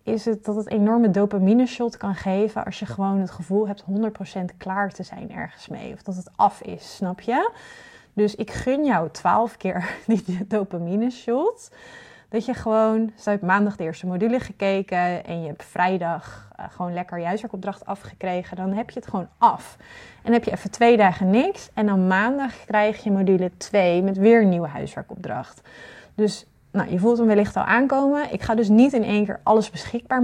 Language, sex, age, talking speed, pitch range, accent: Dutch, female, 30-49, 195 wpm, 185-230 Hz, Dutch